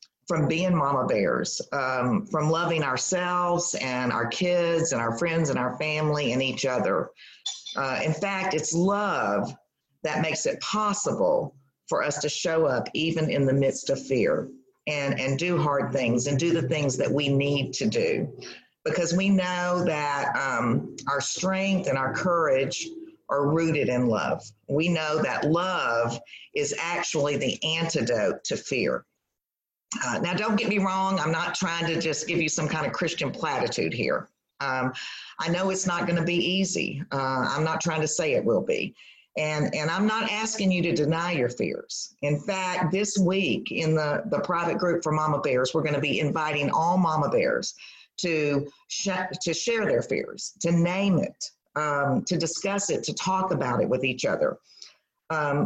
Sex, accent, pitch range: female, American, 145-190 Hz